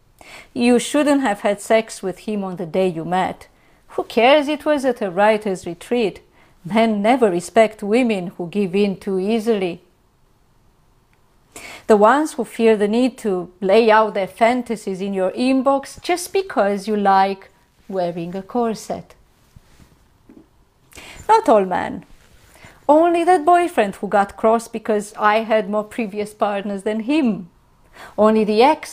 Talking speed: 145 wpm